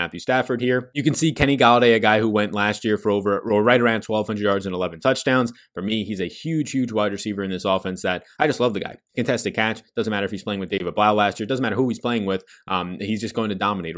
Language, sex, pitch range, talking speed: English, male, 100-125 Hz, 275 wpm